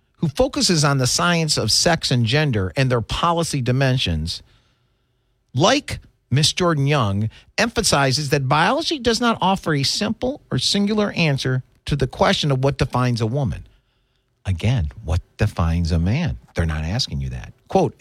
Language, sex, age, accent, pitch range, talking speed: English, male, 50-69, American, 115-165 Hz, 155 wpm